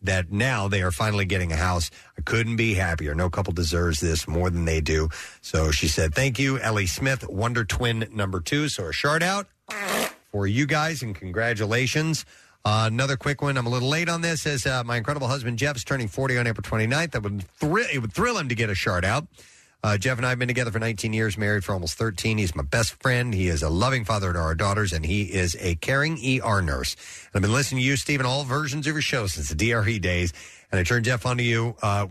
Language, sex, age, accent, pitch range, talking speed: English, male, 40-59, American, 95-130 Hz, 245 wpm